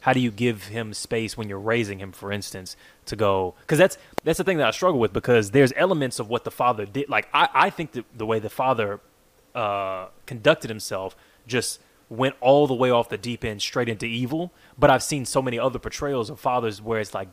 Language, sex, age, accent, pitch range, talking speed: English, male, 20-39, American, 110-145 Hz, 230 wpm